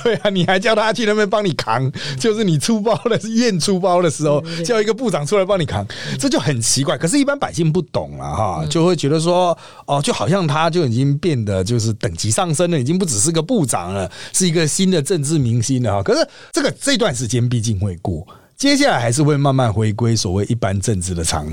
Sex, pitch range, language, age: male, 125-185 Hz, Chinese, 30-49